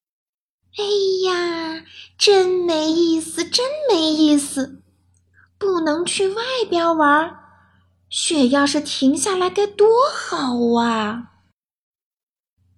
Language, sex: Chinese, female